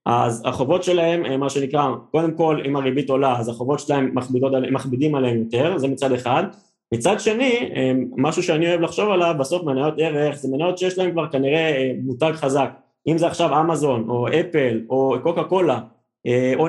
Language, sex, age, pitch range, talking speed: Hebrew, male, 20-39, 135-170 Hz, 175 wpm